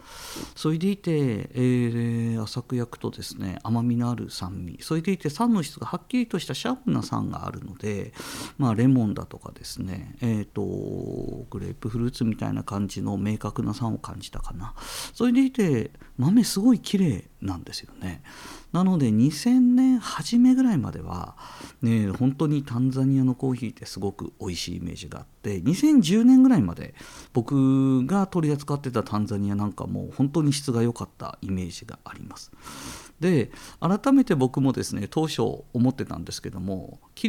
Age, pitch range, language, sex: 50-69, 105-180 Hz, Japanese, male